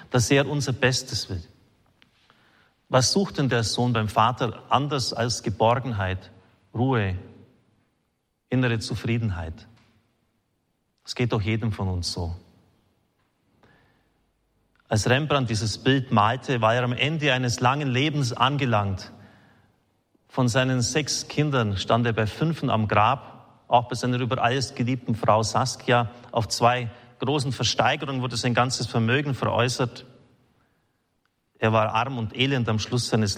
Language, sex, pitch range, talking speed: German, male, 110-130 Hz, 130 wpm